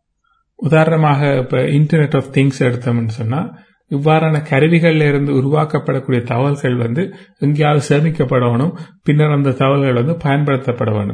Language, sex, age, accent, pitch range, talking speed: Tamil, male, 40-59, native, 125-155 Hz, 110 wpm